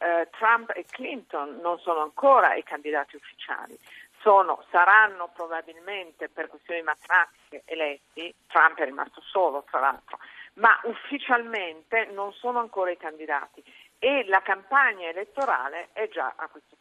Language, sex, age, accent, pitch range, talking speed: Italian, female, 50-69, native, 165-210 Hz, 130 wpm